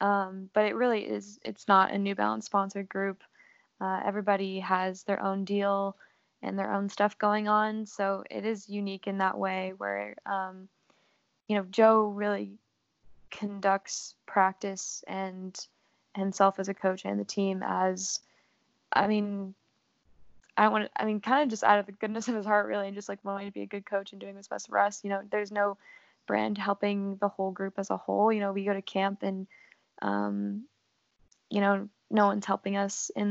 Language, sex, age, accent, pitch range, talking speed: English, female, 10-29, American, 190-205 Hz, 195 wpm